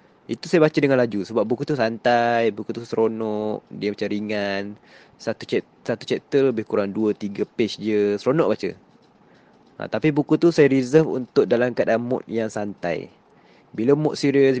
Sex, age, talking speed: male, 20-39, 170 wpm